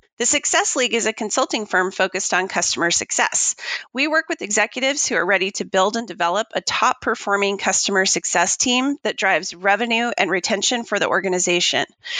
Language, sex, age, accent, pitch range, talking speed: English, female, 30-49, American, 195-265 Hz, 170 wpm